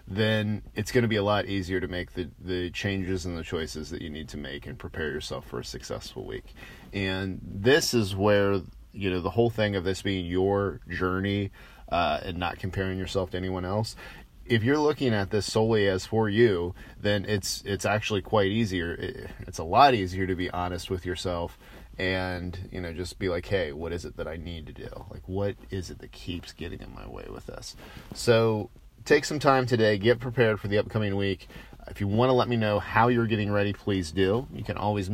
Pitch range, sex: 90-110 Hz, male